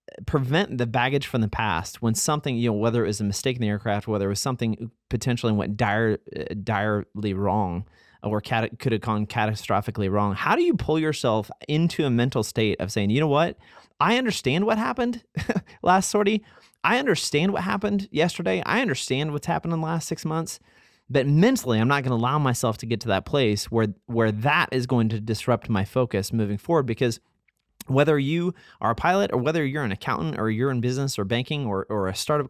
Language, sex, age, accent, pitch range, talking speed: English, male, 30-49, American, 110-160 Hz, 210 wpm